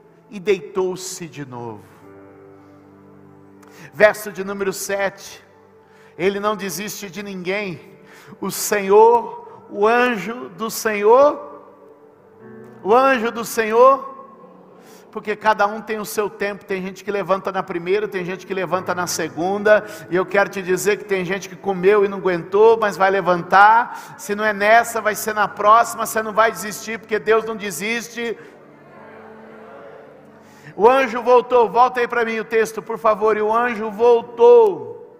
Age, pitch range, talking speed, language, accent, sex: 50-69, 180-230 Hz, 150 wpm, Portuguese, Brazilian, male